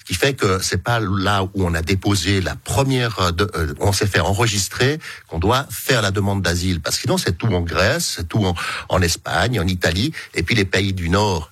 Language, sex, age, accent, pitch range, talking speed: French, male, 60-79, French, 85-105 Hz, 230 wpm